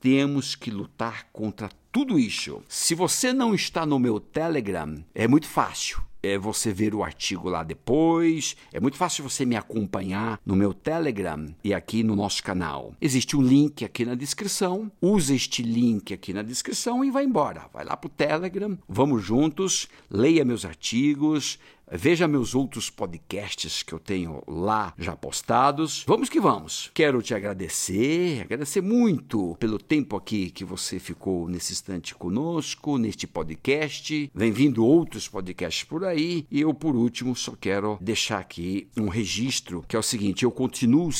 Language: Portuguese